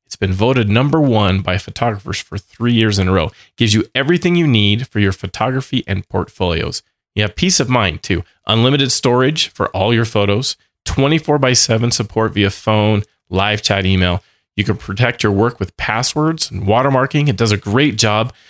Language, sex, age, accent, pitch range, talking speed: English, male, 30-49, American, 100-125 Hz, 190 wpm